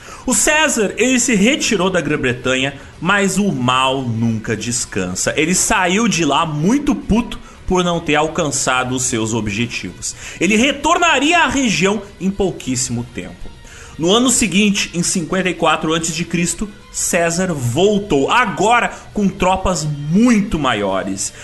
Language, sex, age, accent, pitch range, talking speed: Portuguese, male, 30-49, Brazilian, 145-220 Hz, 125 wpm